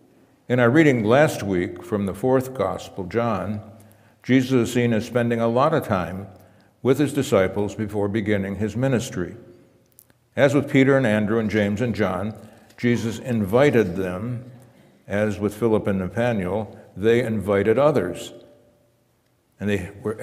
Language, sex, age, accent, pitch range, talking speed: English, male, 60-79, American, 100-125 Hz, 145 wpm